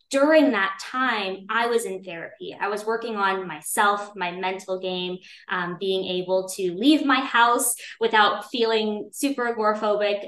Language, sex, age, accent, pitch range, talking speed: English, female, 20-39, American, 185-210 Hz, 150 wpm